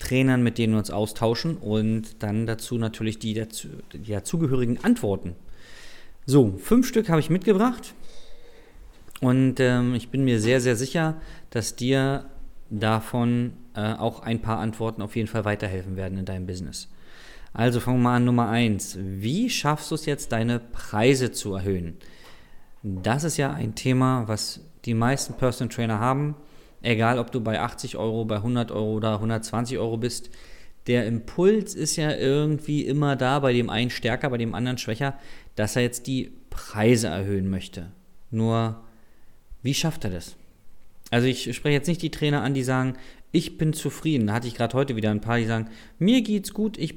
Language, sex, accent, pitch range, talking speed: German, male, German, 110-140 Hz, 180 wpm